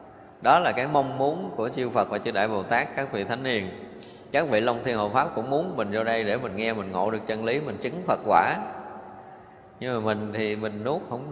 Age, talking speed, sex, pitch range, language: 20-39, 250 wpm, male, 105-130 Hz, Vietnamese